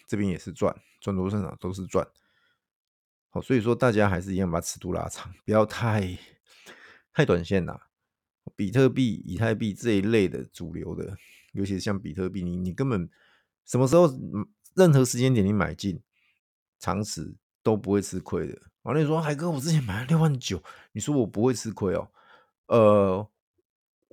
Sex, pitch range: male, 95-125 Hz